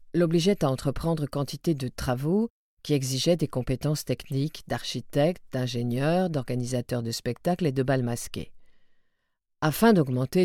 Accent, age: French, 40-59